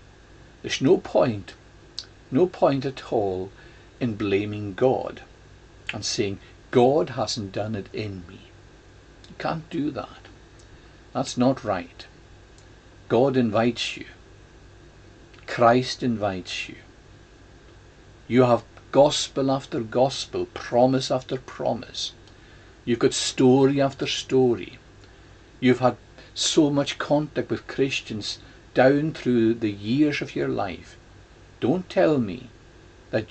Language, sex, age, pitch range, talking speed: English, male, 60-79, 105-125 Hz, 110 wpm